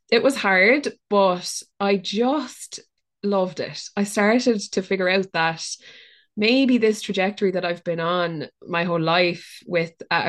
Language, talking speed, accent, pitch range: English, 150 wpm, Irish, 175-215 Hz